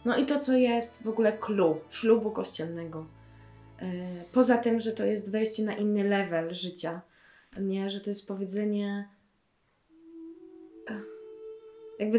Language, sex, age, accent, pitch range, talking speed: Polish, female, 20-39, native, 200-260 Hz, 130 wpm